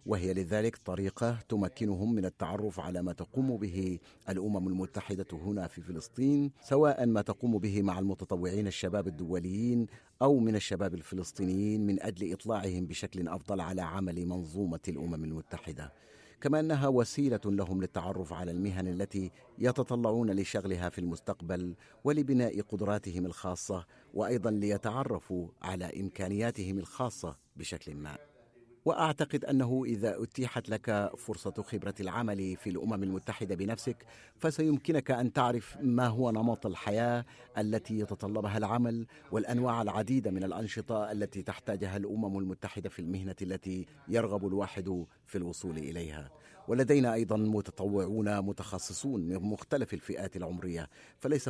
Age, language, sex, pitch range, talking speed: 50-69, Arabic, male, 95-115 Hz, 125 wpm